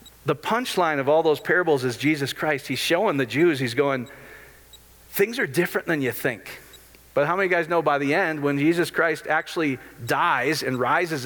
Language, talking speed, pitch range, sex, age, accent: English, 190 wpm, 125-165 Hz, male, 40-59, American